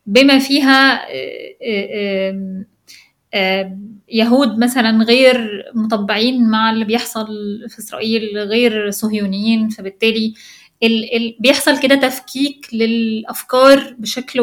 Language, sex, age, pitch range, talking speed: Arabic, female, 20-39, 220-265 Hz, 80 wpm